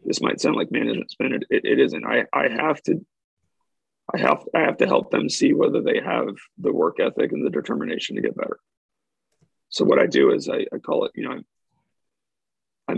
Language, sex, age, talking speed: English, male, 30-49, 215 wpm